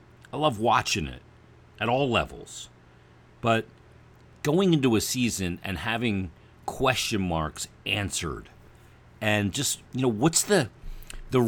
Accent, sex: American, male